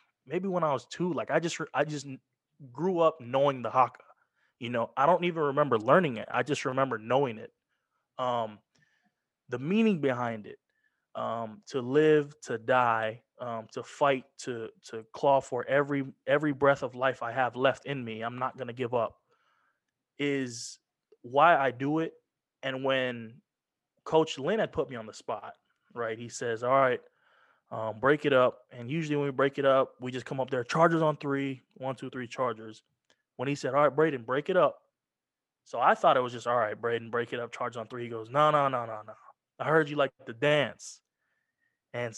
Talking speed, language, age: 200 wpm, English, 20-39